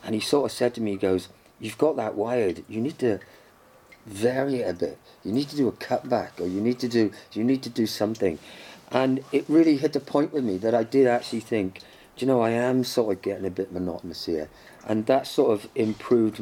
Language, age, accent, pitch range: English, 40-59, British, 95-125 Hz